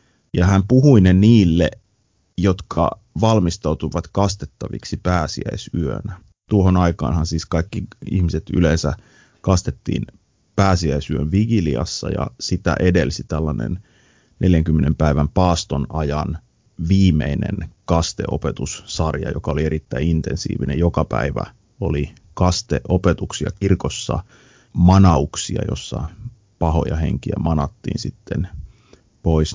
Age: 30-49